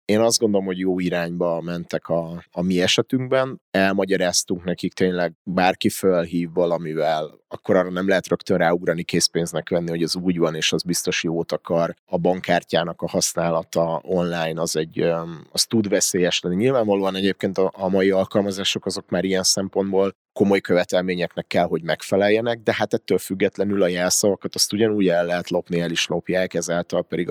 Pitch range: 85-100 Hz